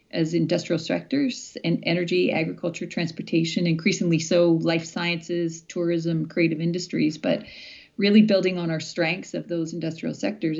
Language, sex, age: English, female, 40-59